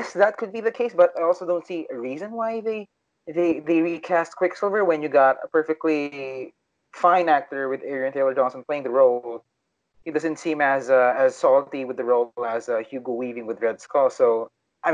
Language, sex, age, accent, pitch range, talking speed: English, male, 20-39, Filipino, 135-175 Hz, 205 wpm